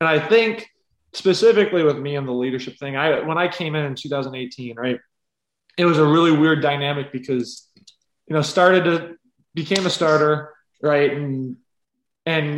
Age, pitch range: 20-39, 130-170 Hz